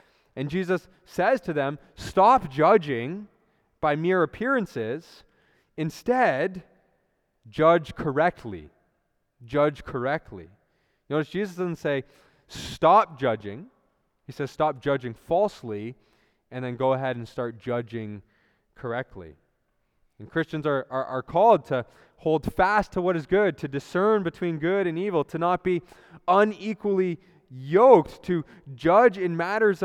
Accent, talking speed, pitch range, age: American, 125 wpm, 130-185 Hz, 20-39